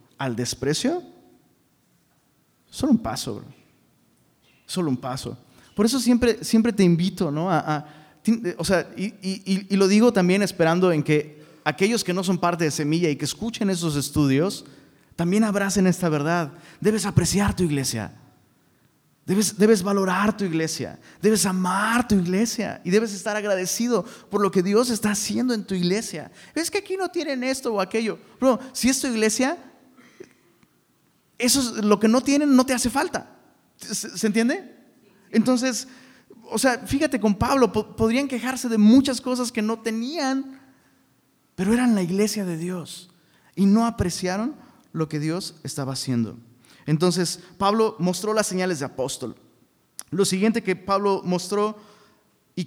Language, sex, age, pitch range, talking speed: Spanish, male, 30-49, 170-230 Hz, 160 wpm